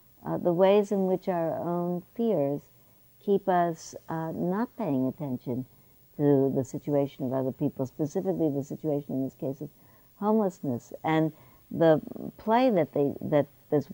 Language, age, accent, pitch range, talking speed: English, 60-79, American, 145-185 Hz, 150 wpm